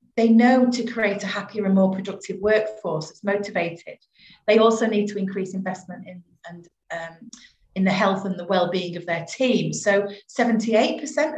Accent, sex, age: British, female, 40-59